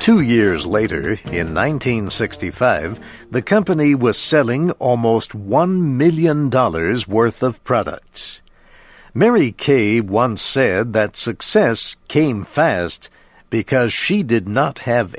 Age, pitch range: 60-79, 105-135 Hz